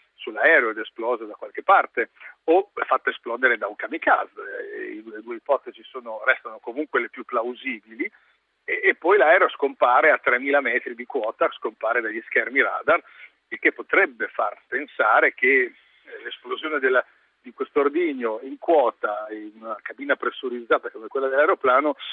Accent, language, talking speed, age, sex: native, Italian, 155 wpm, 50-69, male